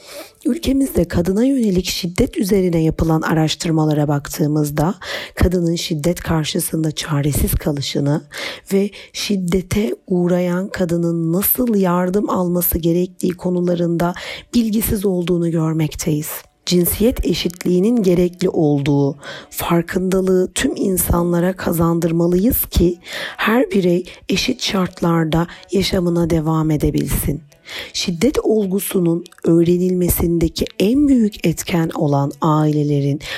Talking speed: 90 wpm